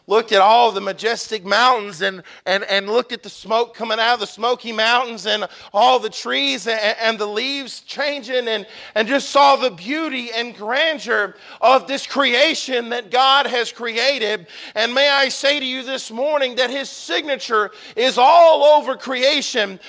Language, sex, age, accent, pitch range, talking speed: English, male, 40-59, American, 220-275 Hz, 175 wpm